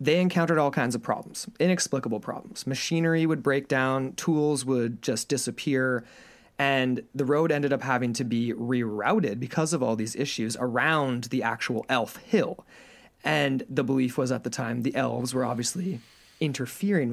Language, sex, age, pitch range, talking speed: English, male, 30-49, 125-155 Hz, 165 wpm